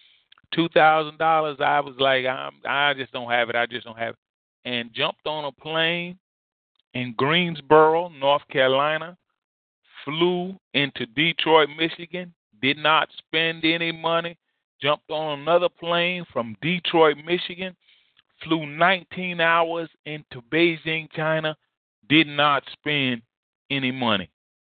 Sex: male